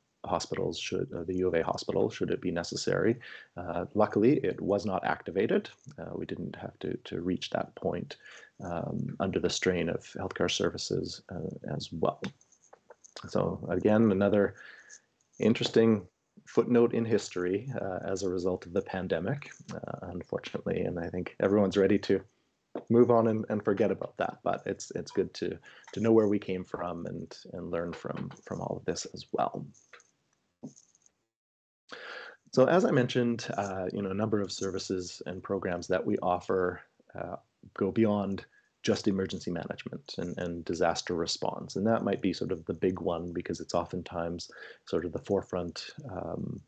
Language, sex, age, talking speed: English, male, 30-49, 165 wpm